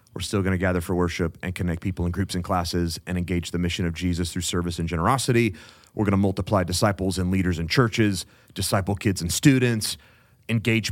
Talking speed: 210 wpm